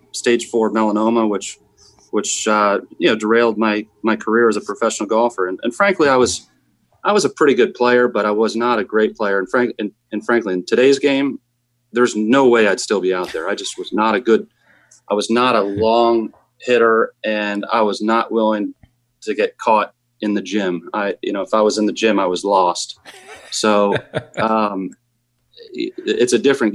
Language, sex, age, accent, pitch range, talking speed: English, male, 30-49, American, 105-120 Hz, 205 wpm